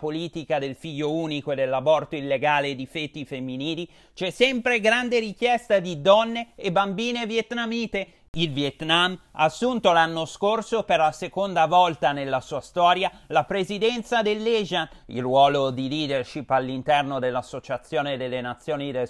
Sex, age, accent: male, 30-49, native